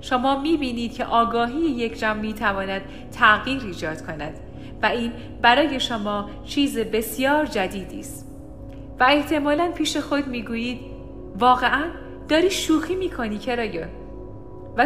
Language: Persian